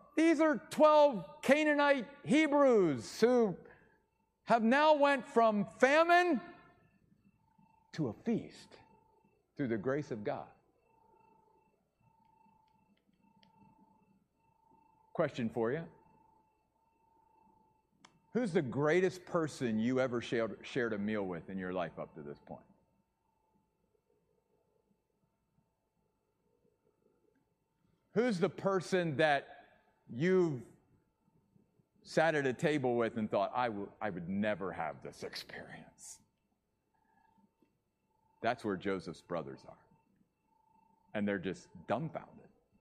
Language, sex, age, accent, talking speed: English, male, 50-69, American, 95 wpm